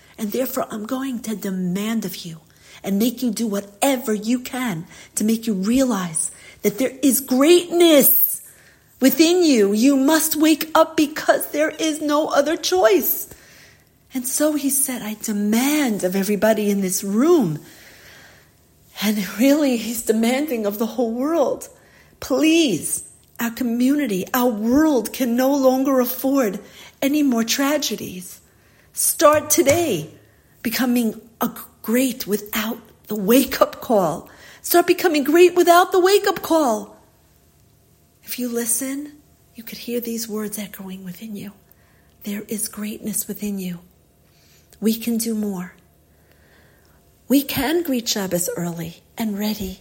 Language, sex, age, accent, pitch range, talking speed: English, female, 40-59, American, 205-280 Hz, 130 wpm